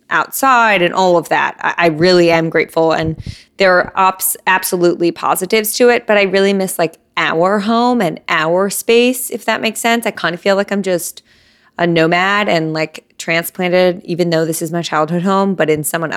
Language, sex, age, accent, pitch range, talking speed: English, female, 20-39, American, 165-195 Hz, 195 wpm